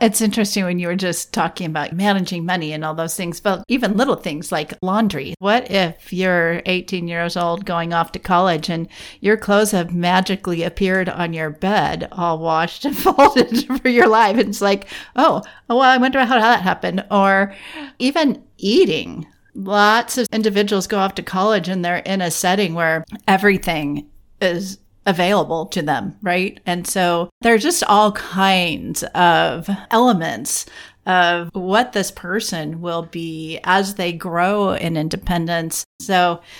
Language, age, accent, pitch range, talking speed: English, 40-59, American, 170-210 Hz, 160 wpm